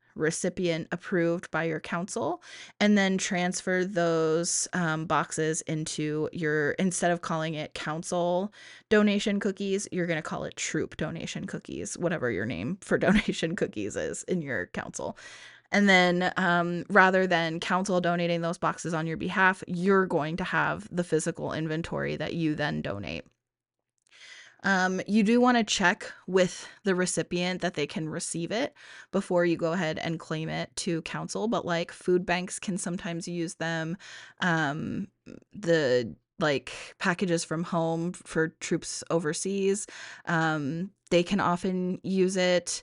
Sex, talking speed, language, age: female, 150 wpm, English, 20-39